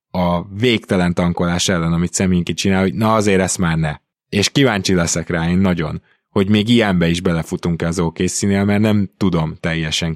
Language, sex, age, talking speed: Hungarian, male, 20-39, 185 wpm